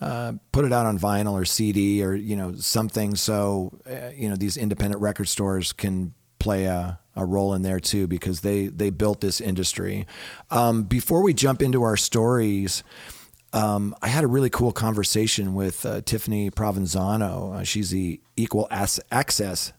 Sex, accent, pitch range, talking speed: male, American, 95-110 Hz, 175 wpm